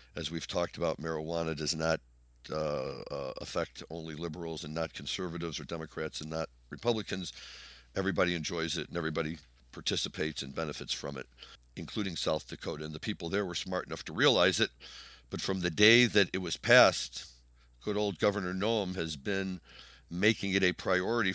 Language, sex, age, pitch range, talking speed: English, male, 60-79, 80-95 Hz, 170 wpm